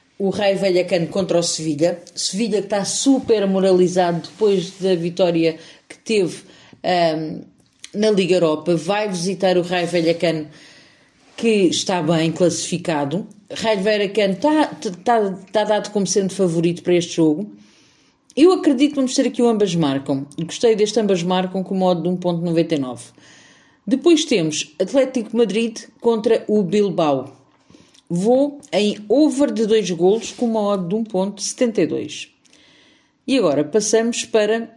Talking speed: 145 wpm